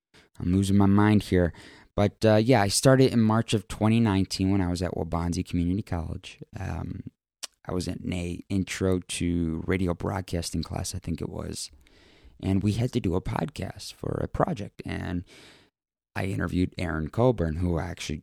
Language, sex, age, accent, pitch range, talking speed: English, male, 20-39, American, 85-110 Hz, 175 wpm